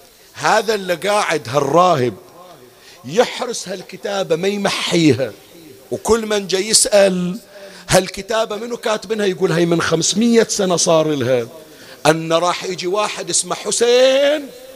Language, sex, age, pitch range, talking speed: Arabic, male, 50-69, 160-230 Hz, 115 wpm